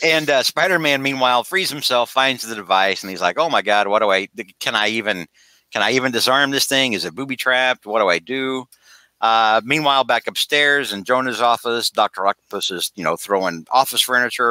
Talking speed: 210 wpm